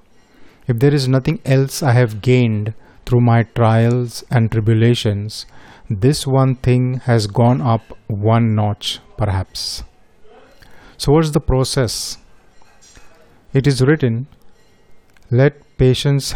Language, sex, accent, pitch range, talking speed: Hindi, male, native, 115-135 Hz, 115 wpm